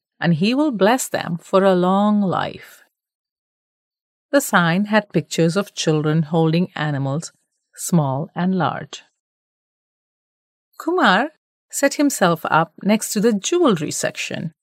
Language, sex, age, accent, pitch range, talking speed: English, female, 40-59, Indian, 170-230 Hz, 120 wpm